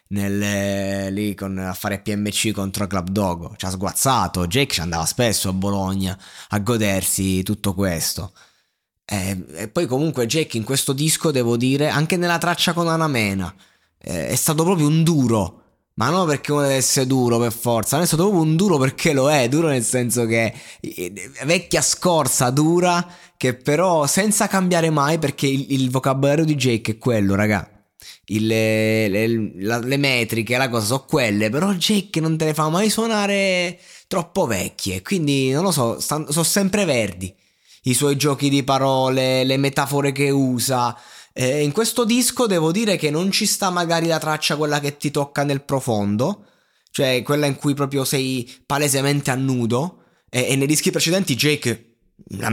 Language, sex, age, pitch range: Italian, male, 20-39, 110-155 Hz